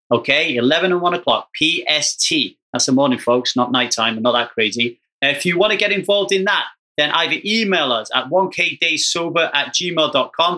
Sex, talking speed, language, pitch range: male, 175 wpm, English, 130-210 Hz